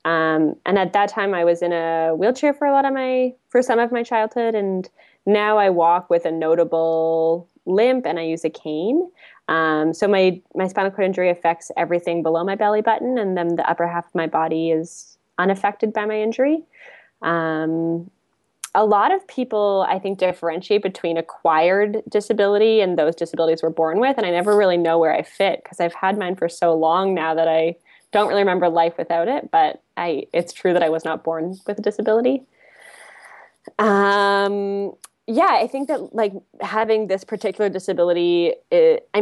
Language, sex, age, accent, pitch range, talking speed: English, female, 10-29, American, 165-215 Hz, 190 wpm